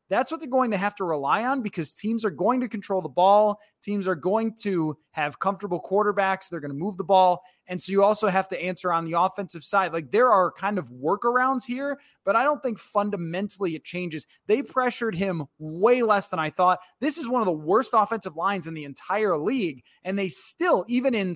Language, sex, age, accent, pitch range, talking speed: English, male, 20-39, American, 170-220 Hz, 225 wpm